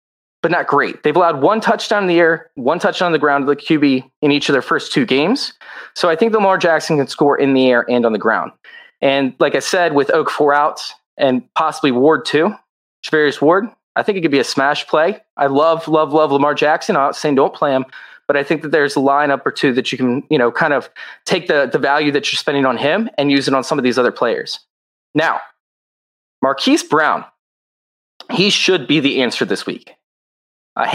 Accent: American